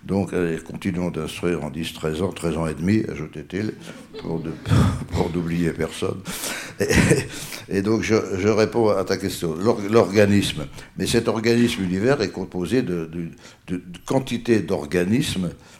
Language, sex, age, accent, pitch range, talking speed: French, male, 60-79, French, 85-100 Hz, 150 wpm